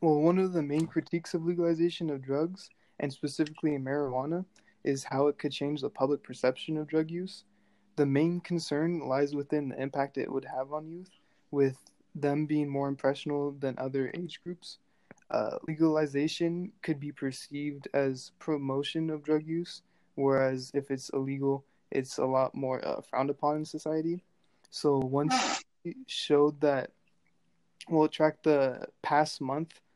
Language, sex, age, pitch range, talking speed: English, male, 20-39, 135-155 Hz, 160 wpm